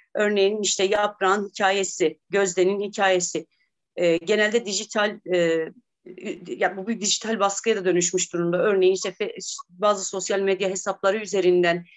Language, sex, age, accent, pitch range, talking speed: Turkish, female, 40-59, native, 190-255 Hz, 125 wpm